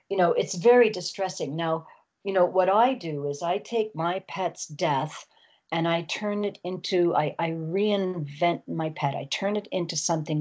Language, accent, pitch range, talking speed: English, American, 150-180 Hz, 185 wpm